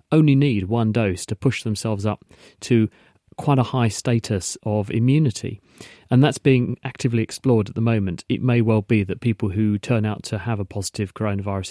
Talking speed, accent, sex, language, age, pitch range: 190 wpm, British, male, English, 40-59, 105-120 Hz